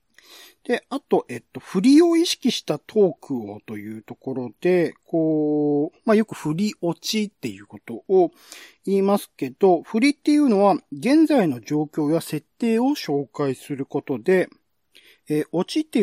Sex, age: male, 40-59